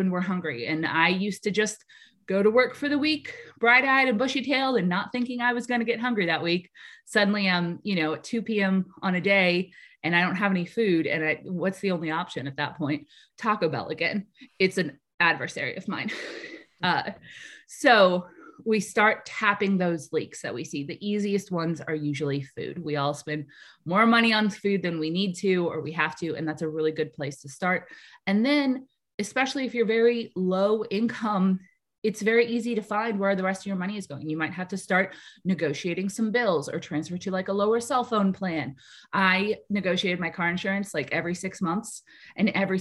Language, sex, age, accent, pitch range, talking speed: English, female, 20-39, American, 170-220 Hz, 210 wpm